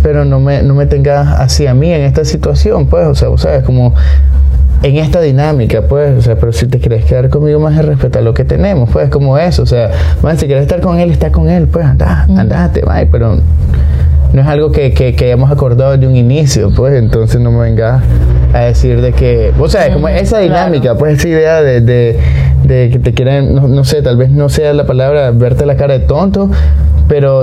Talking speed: 225 wpm